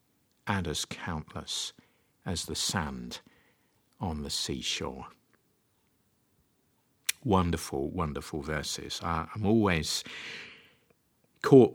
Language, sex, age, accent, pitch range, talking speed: English, male, 50-69, British, 80-100 Hz, 75 wpm